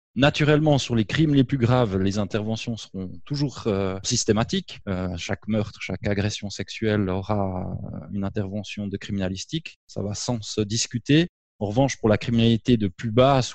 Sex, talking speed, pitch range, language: male, 165 wpm, 100-125 Hz, French